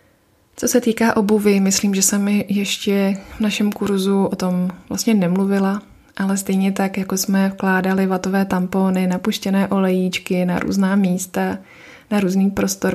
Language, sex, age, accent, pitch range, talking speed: Czech, female, 20-39, native, 180-195 Hz, 150 wpm